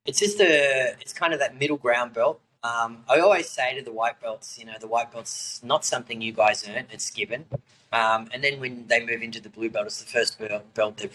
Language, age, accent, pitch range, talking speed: English, 20-39, Australian, 110-145 Hz, 235 wpm